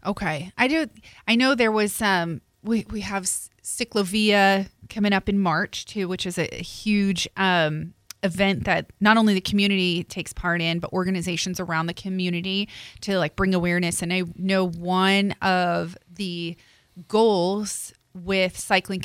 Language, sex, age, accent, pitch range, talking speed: English, female, 30-49, American, 180-215 Hz, 155 wpm